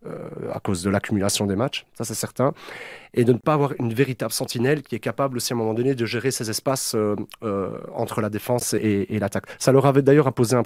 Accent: French